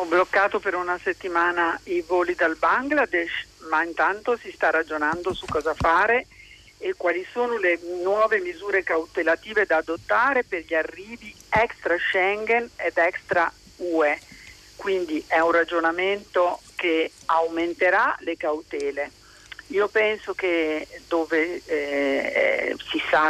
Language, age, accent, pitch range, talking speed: Italian, 50-69, native, 160-205 Hz, 125 wpm